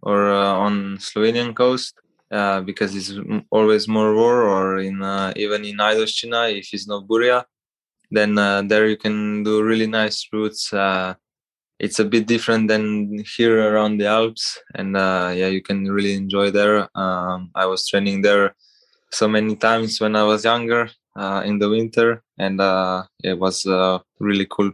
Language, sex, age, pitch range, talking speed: English, male, 20-39, 95-105 Hz, 170 wpm